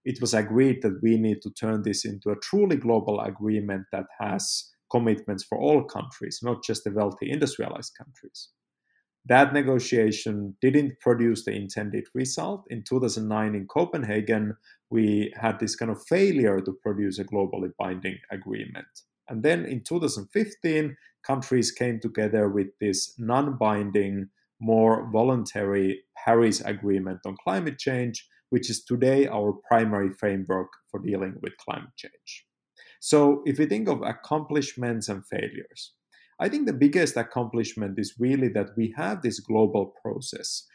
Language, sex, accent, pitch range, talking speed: English, male, Finnish, 105-125 Hz, 145 wpm